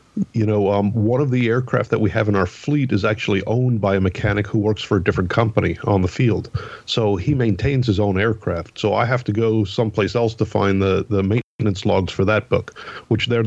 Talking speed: 230 wpm